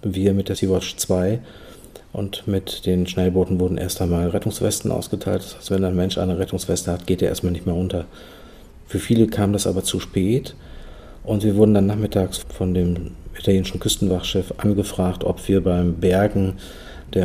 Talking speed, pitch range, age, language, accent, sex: 175 wpm, 90-100 Hz, 40-59, German, German, male